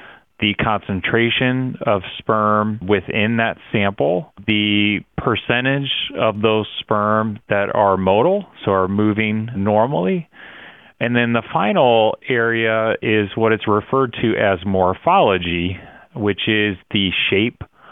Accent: American